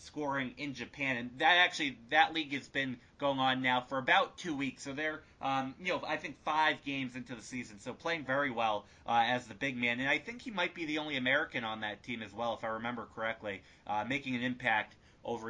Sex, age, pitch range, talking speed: male, 30-49, 120-150 Hz, 235 wpm